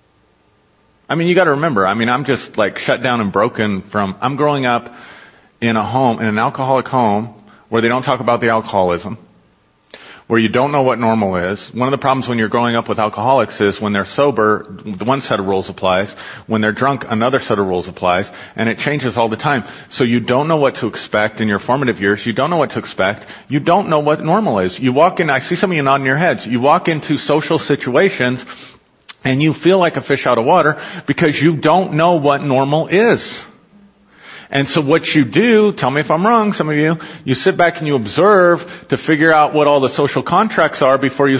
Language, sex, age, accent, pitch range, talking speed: English, male, 40-59, American, 115-155 Hz, 225 wpm